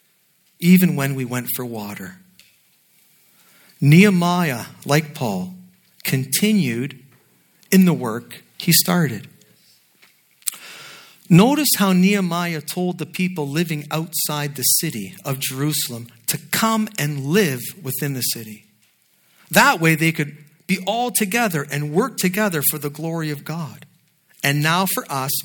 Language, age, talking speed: English, 50-69, 125 wpm